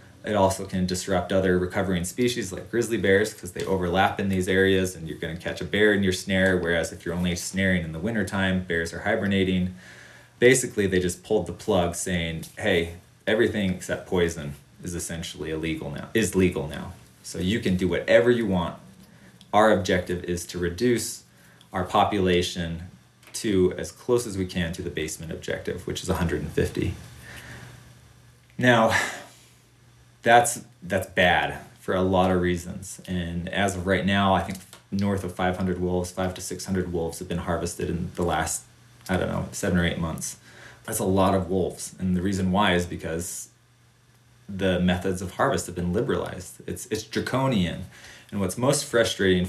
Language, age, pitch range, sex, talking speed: English, 20-39, 90-95 Hz, male, 175 wpm